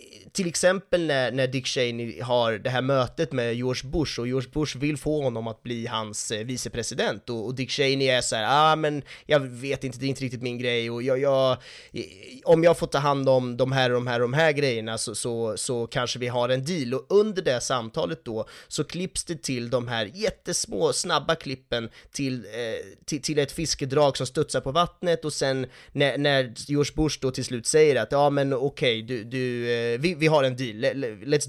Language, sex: Swedish, male